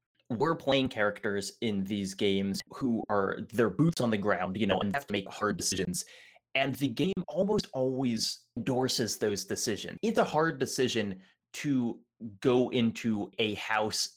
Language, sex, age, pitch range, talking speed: English, male, 30-49, 110-165 Hz, 160 wpm